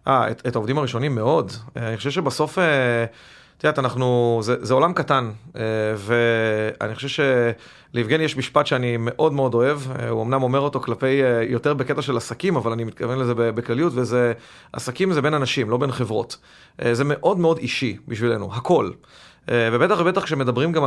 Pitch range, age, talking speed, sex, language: 115-145 Hz, 30-49, 160 wpm, male, Hebrew